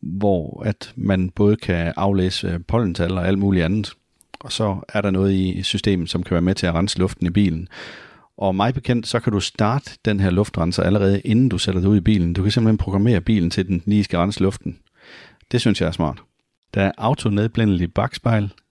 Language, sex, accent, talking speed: Danish, male, native, 215 wpm